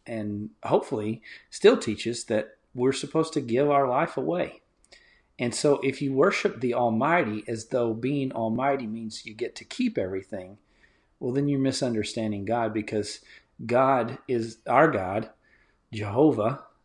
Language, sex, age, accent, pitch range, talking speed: English, male, 40-59, American, 105-125 Hz, 140 wpm